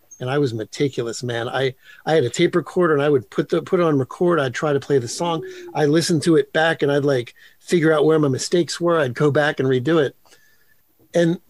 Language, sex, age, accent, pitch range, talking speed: English, male, 50-69, American, 125-155 Hz, 245 wpm